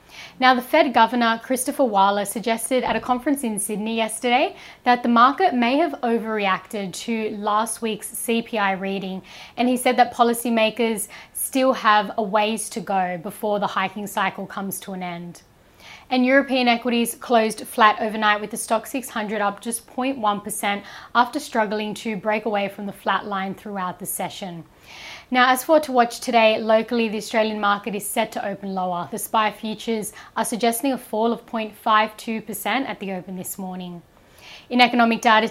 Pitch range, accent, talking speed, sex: 205-240 Hz, Australian, 170 wpm, female